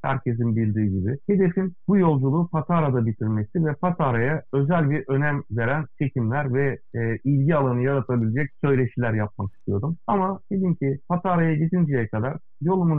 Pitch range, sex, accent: 120-165 Hz, male, native